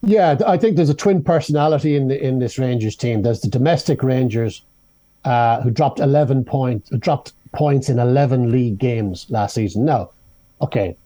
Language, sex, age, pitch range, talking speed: English, male, 60-79, 120-165 Hz, 175 wpm